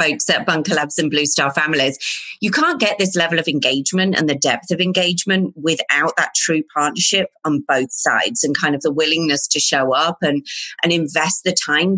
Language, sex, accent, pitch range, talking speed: English, female, British, 155-205 Hz, 200 wpm